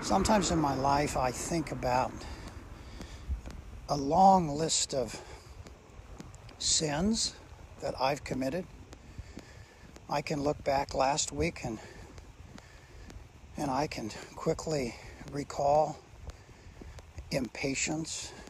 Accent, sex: American, male